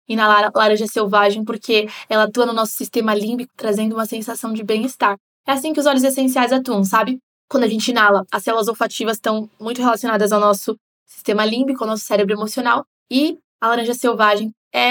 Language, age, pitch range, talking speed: Portuguese, 20-39, 225-260 Hz, 185 wpm